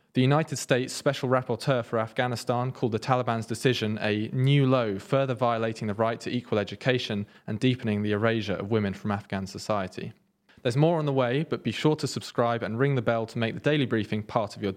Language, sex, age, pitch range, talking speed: English, male, 20-39, 110-135 Hz, 210 wpm